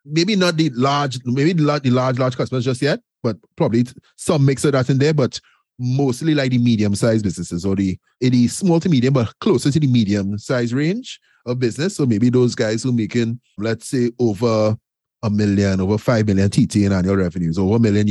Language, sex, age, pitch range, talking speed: English, male, 30-49, 100-150 Hz, 210 wpm